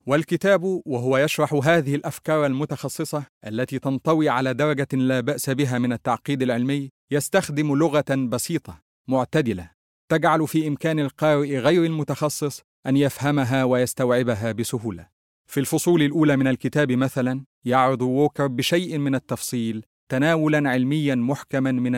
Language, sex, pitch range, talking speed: English, male, 120-150 Hz, 125 wpm